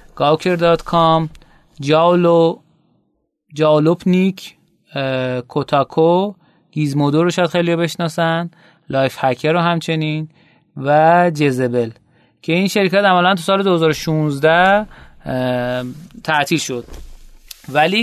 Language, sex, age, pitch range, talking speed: Persian, male, 30-49, 140-185 Hz, 85 wpm